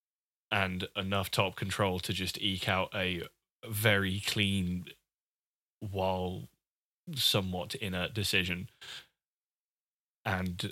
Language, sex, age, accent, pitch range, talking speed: English, male, 20-39, British, 95-110 Hz, 90 wpm